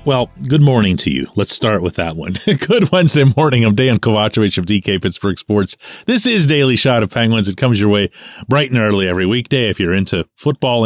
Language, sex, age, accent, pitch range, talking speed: English, male, 40-59, American, 95-130 Hz, 215 wpm